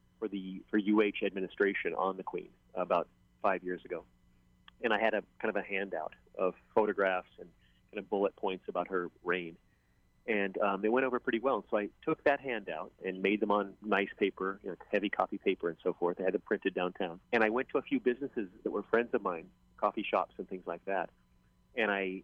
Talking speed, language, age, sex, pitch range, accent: 220 wpm, English, 30-49, male, 95-115 Hz, American